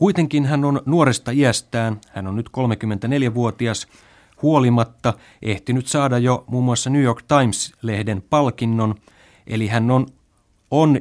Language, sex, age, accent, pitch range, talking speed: Finnish, male, 30-49, native, 105-130 Hz, 125 wpm